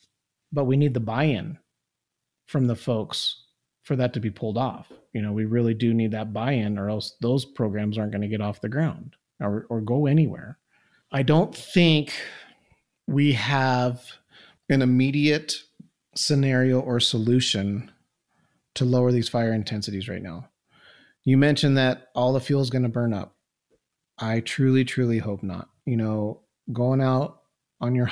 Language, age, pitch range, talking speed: English, 30-49, 105-130 Hz, 160 wpm